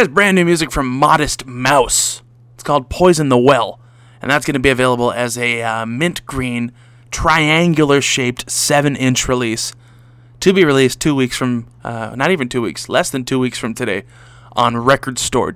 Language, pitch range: English, 120-135 Hz